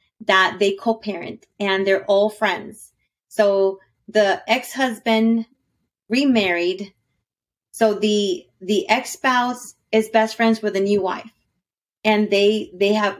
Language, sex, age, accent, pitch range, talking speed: English, female, 30-49, American, 195-225 Hz, 120 wpm